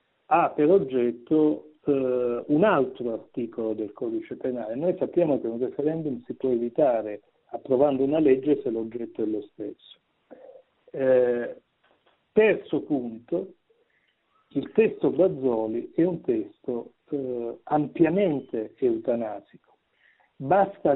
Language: Italian